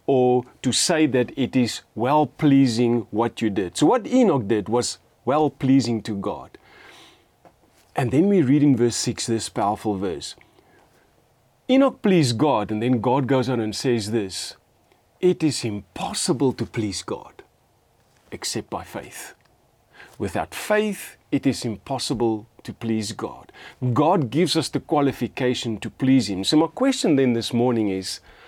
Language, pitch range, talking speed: English, 115-150 Hz, 150 wpm